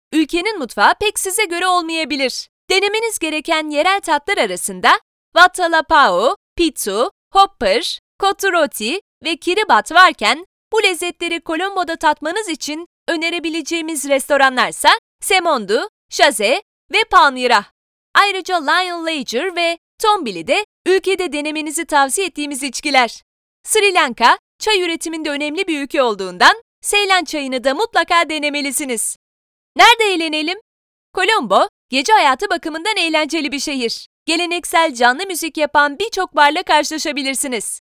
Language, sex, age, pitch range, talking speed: Turkish, female, 30-49, 295-385 Hz, 110 wpm